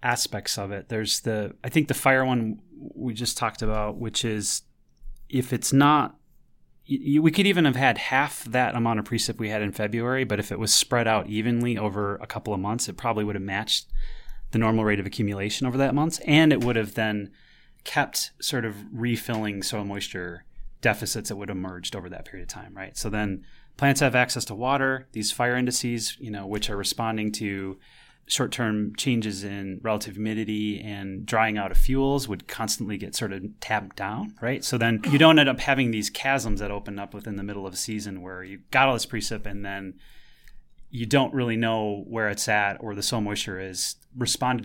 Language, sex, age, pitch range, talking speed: English, male, 30-49, 105-125 Hz, 205 wpm